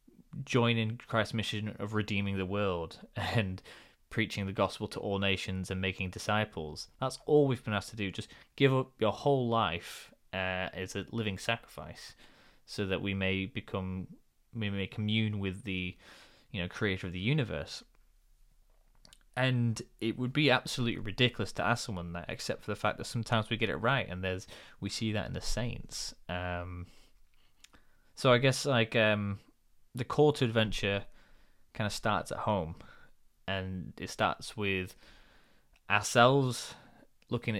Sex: male